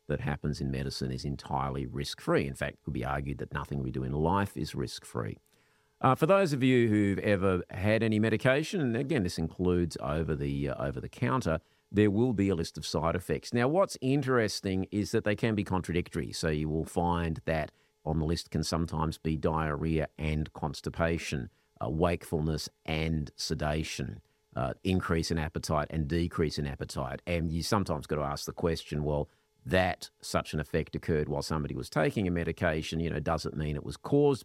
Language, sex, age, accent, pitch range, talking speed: English, male, 50-69, Australian, 75-105 Hz, 185 wpm